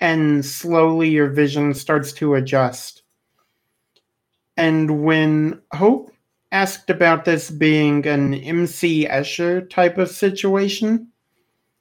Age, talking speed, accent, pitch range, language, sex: 40-59, 100 wpm, American, 140-170 Hz, English, male